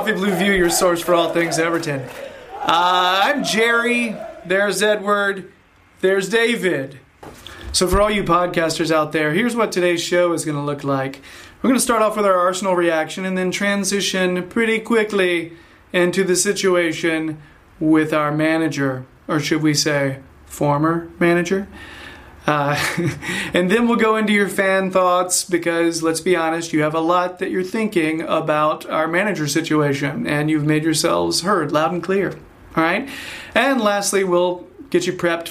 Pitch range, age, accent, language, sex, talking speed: 160-195 Hz, 30-49, American, English, male, 165 wpm